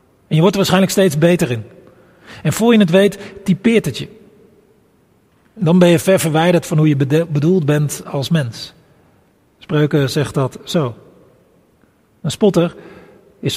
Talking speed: 160 wpm